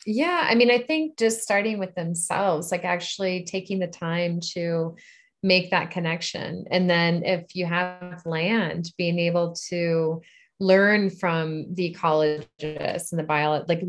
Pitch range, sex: 170-195 Hz, female